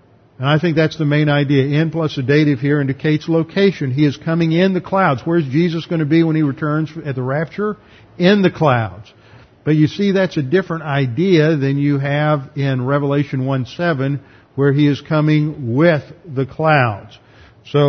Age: 50-69